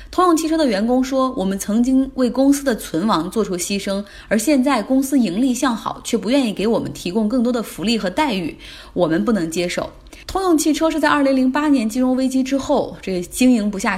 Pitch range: 190-260 Hz